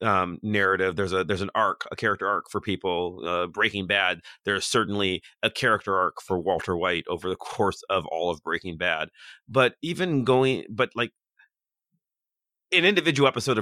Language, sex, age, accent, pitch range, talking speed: English, male, 30-49, American, 95-130 Hz, 170 wpm